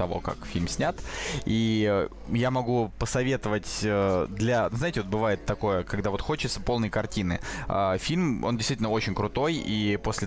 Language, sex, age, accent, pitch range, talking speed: Russian, male, 20-39, native, 110-140 Hz, 145 wpm